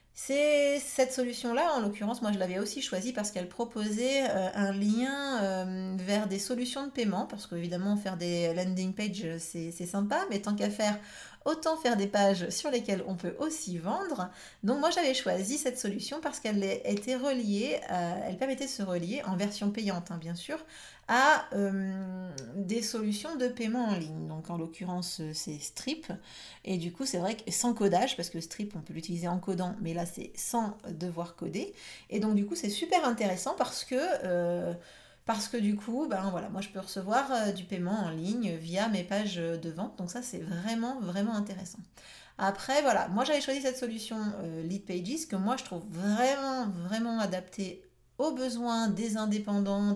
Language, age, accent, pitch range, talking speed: French, 30-49, French, 180-235 Hz, 190 wpm